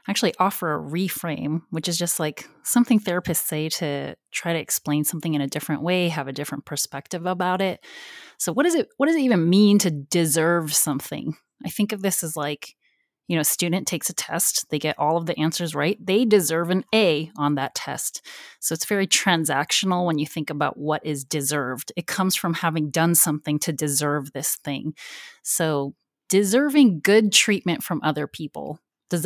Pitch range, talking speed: 155-190 Hz, 195 wpm